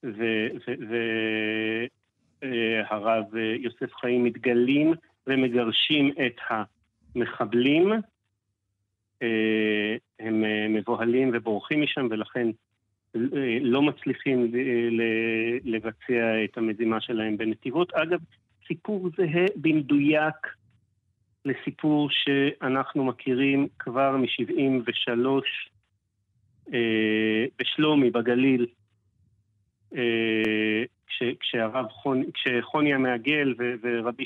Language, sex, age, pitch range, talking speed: Hebrew, male, 40-59, 110-135 Hz, 60 wpm